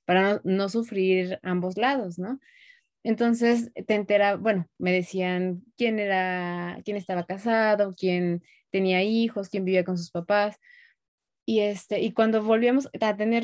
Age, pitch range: 20-39, 185-225 Hz